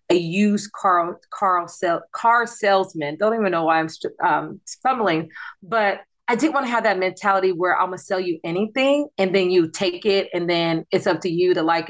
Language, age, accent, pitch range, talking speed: English, 30-49, American, 160-200 Hz, 210 wpm